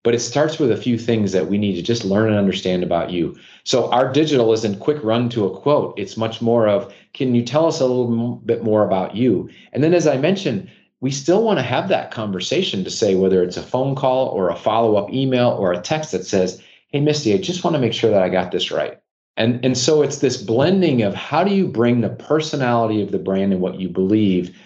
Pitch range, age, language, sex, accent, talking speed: 100-130 Hz, 30-49, English, male, American, 245 wpm